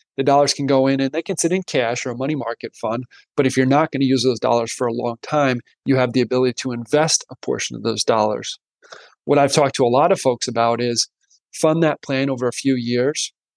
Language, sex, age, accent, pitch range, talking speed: English, male, 30-49, American, 125-150 Hz, 250 wpm